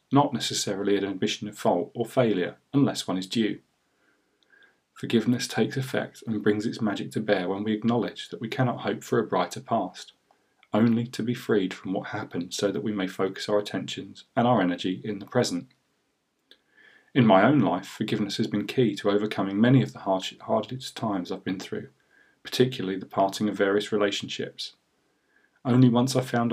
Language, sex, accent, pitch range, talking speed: English, male, British, 100-125 Hz, 180 wpm